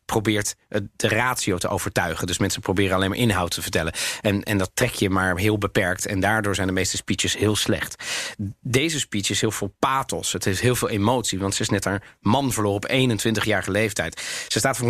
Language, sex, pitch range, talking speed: Dutch, male, 110-130 Hz, 215 wpm